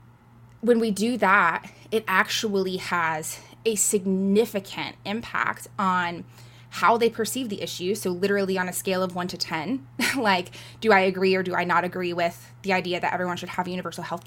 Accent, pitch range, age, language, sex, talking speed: American, 160-210 Hz, 20-39, English, female, 180 wpm